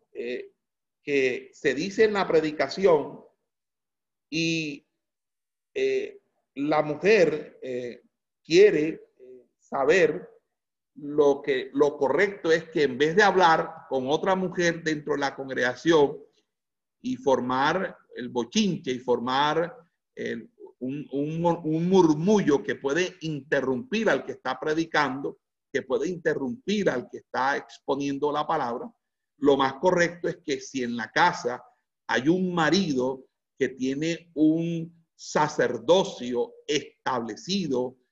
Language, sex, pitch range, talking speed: Spanish, male, 140-235 Hz, 115 wpm